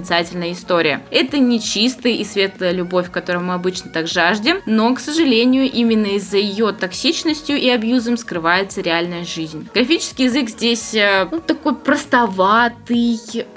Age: 20-39